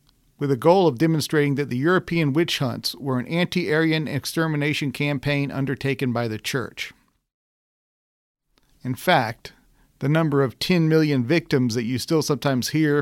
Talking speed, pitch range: 150 wpm, 125-150 Hz